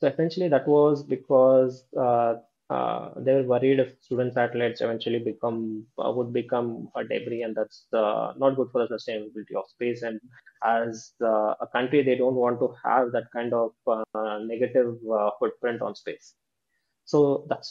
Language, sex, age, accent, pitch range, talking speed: English, male, 20-39, Indian, 120-135 Hz, 175 wpm